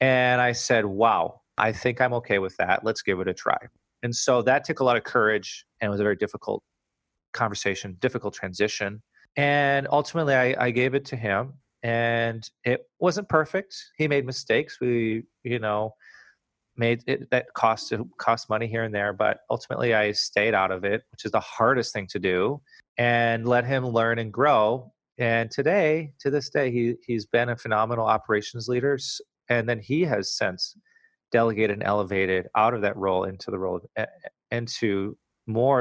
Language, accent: English, American